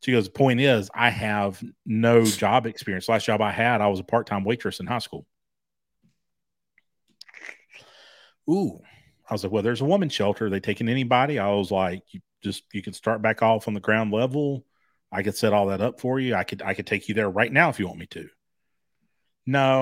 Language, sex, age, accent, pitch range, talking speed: English, male, 40-59, American, 100-120 Hz, 220 wpm